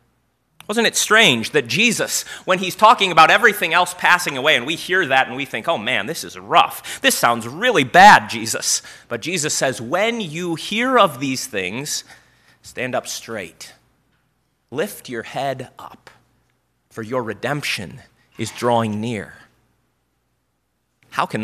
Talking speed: 150 wpm